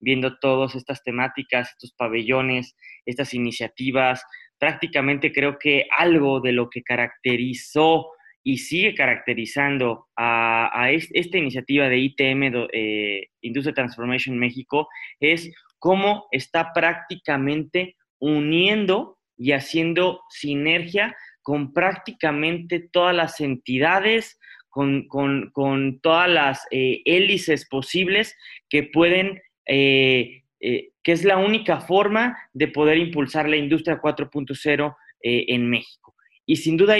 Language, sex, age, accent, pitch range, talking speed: Spanish, male, 20-39, Mexican, 130-175 Hz, 115 wpm